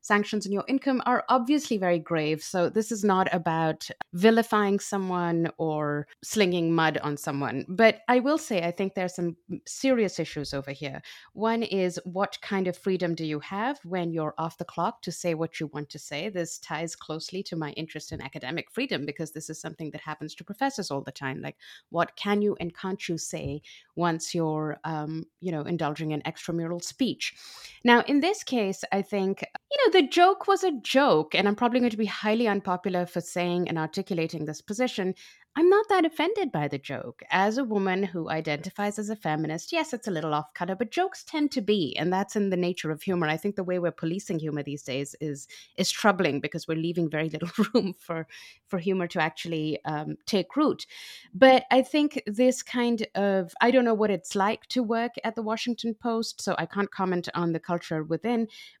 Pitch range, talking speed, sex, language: 160-225 Hz, 205 wpm, female, English